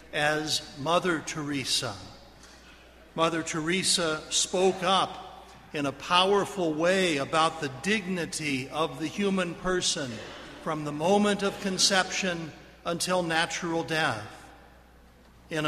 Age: 60-79